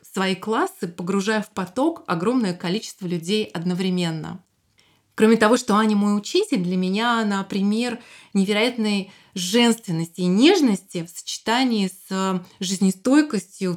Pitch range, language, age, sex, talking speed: 185-230 Hz, Russian, 20-39, female, 120 wpm